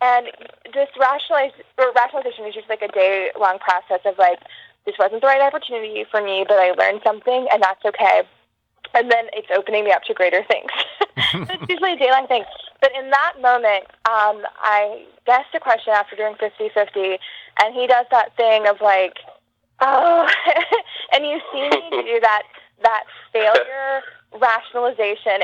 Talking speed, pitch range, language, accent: 165 wpm, 205-275 Hz, English, American